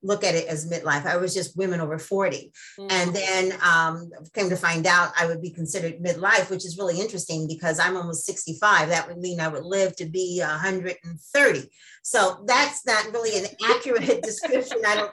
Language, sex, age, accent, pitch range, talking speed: English, female, 40-59, American, 170-205 Hz, 195 wpm